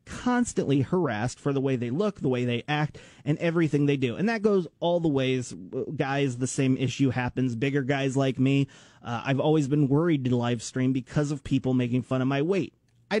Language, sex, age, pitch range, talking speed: English, male, 30-49, 130-165 Hz, 215 wpm